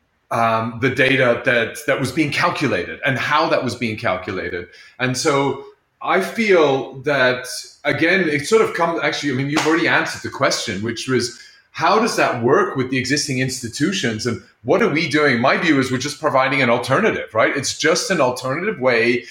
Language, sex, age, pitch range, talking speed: English, male, 30-49, 120-145 Hz, 190 wpm